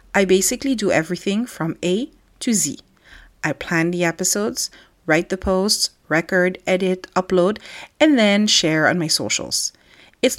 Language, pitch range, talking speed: English, 165-230 Hz, 145 wpm